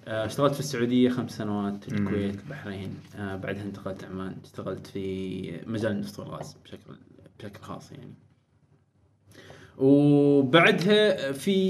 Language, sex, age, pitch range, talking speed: Arabic, male, 20-39, 105-135 Hz, 115 wpm